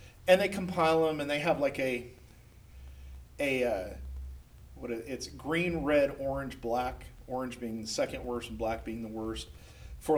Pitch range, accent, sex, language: 120-165 Hz, American, male, English